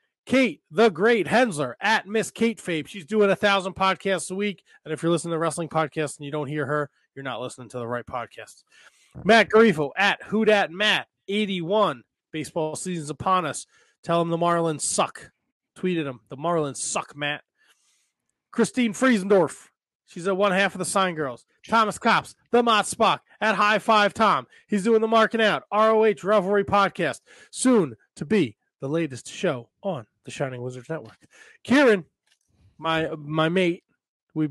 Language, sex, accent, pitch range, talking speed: English, male, American, 150-210 Hz, 170 wpm